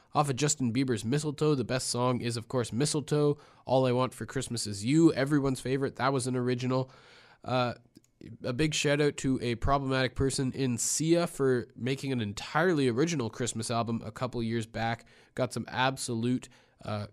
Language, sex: English, male